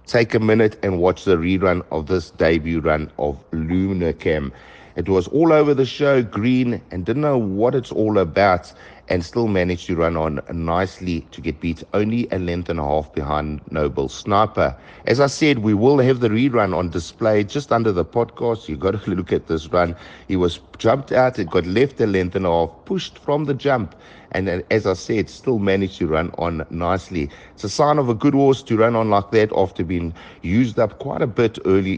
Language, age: English, 60-79